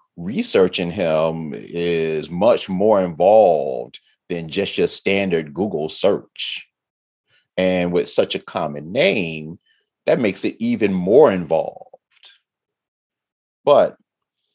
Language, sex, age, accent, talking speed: English, male, 30-49, American, 105 wpm